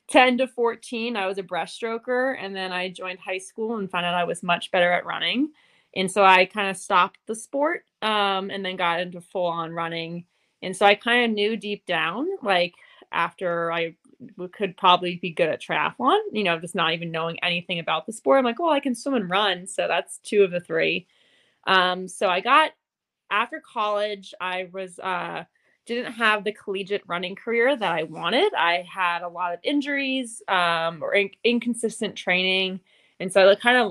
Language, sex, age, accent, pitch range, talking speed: English, female, 20-39, American, 180-225 Hz, 200 wpm